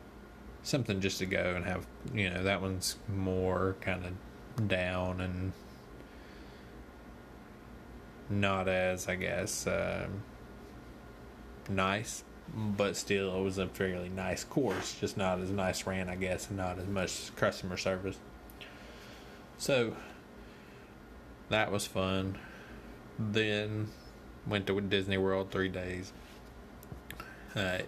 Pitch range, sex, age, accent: 90-100 Hz, male, 20-39, American